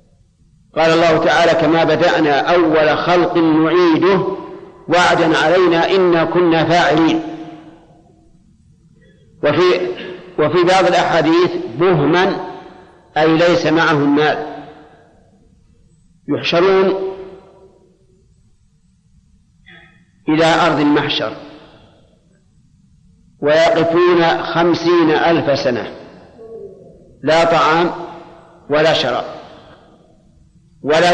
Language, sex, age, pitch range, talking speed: Arabic, male, 50-69, 155-175 Hz, 65 wpm